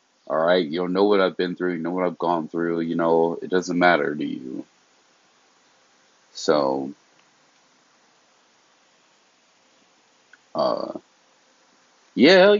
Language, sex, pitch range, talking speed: English, male, 85-110 Hz, 120 wpm